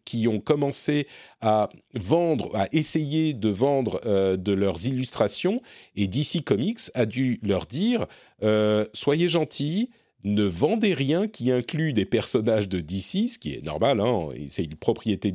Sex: male